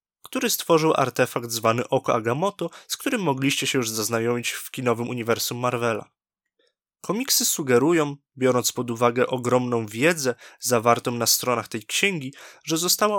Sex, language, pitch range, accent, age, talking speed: male, Polish, 125-165 Hz, native, 20-39, 135 wpm